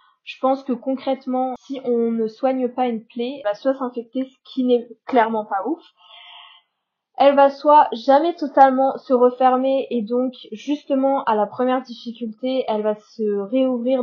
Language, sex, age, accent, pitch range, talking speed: French, female, 20-39, French, 215-255 Hz, 165 wpm